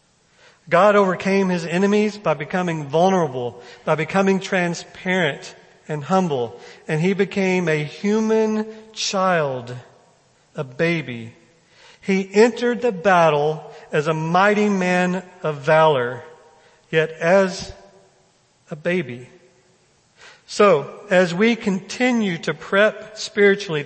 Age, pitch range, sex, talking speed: 50-69, 155-200 Hz, male, 105 wpm